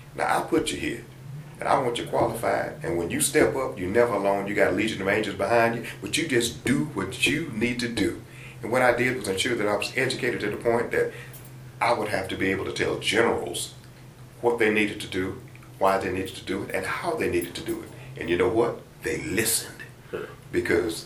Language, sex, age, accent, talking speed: English, male, 40-59, American, 235 wpm